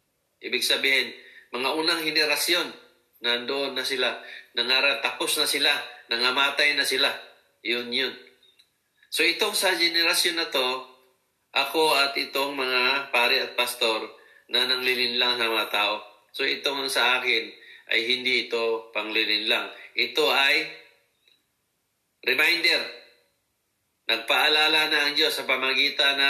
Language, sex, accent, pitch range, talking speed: Filipino, male, native, 130-155 Hz, 120 wpm